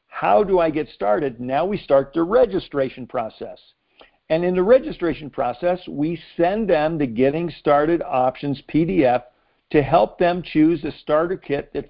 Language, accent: English, American